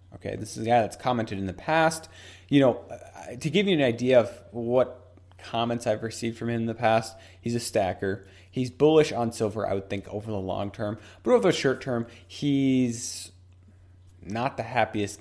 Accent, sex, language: American, male, English